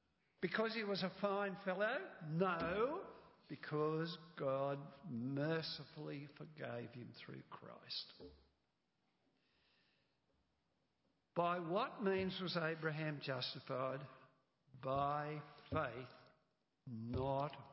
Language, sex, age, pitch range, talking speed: English, male, 60-79, 140-185 Hz, 80 wpm